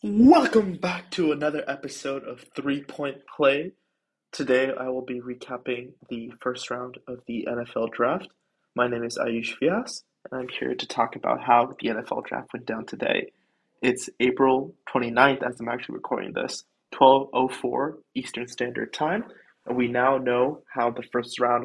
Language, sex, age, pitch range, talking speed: English, male, 20-39, 120-130 Hz, 165 wpm